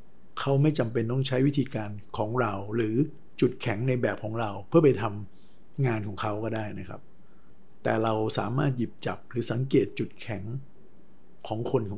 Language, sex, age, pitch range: Thai, male, 60-79, 105-130 Hz